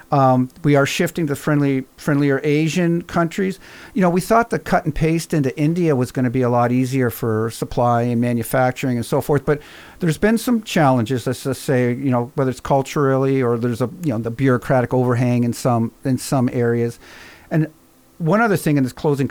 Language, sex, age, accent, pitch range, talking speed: English, male, 50-69, American, 125-155 Hz, 205 wpm